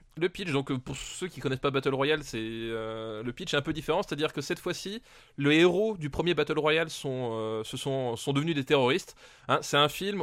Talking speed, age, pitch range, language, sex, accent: 240 wpm, 20-39, 120-155 Hz, French, male, French